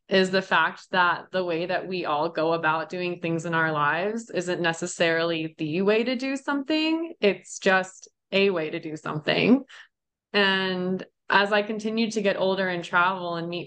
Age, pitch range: 20-39, 165-200 Hz